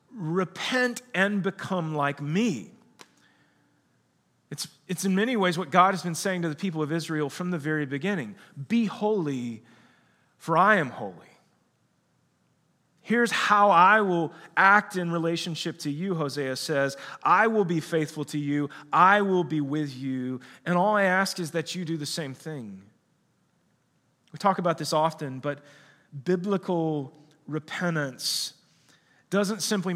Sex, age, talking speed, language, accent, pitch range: male, 30-49, 145 wpm, English, American, 150-185 Hz